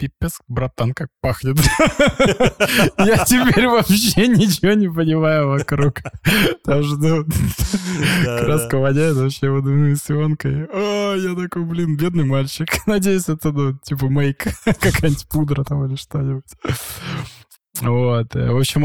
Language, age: Russian, 20-39